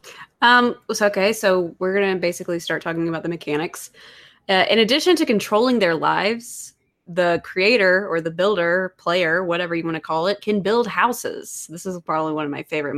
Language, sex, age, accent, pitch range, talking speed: English, female, 20-39, American, 165-200 Hz, 185 wpm